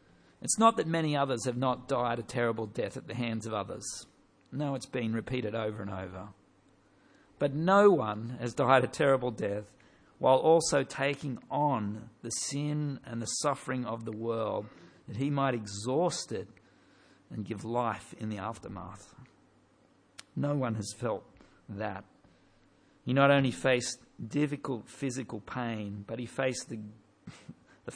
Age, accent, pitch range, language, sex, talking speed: 50-69, Australian, 105-135 Hz, English, male, 150 wpm